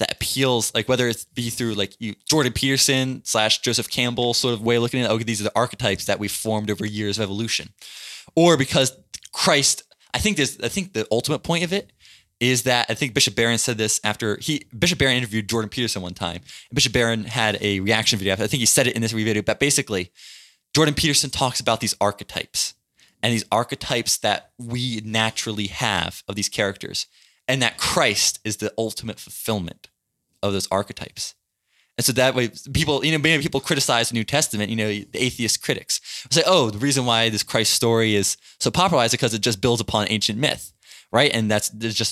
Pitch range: 105-130 Hz